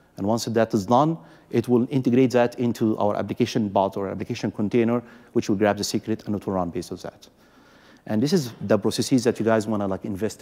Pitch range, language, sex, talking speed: 105-130 Hz, English, male, 225 wpm